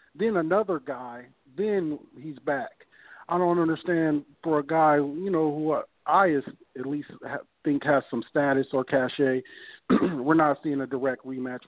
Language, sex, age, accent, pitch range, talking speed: English, male, 40-59, American, 140-170 Hz, 160 wpm